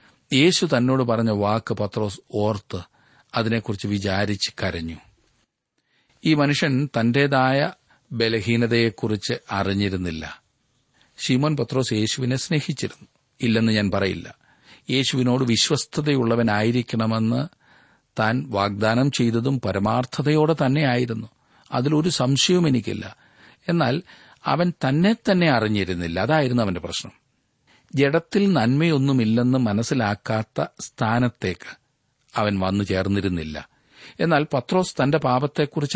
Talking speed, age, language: 80 wpm, 40-59, Malayalam